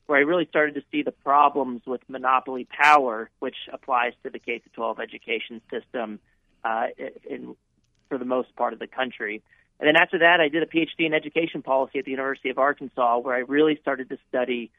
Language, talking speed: English, 200 wpm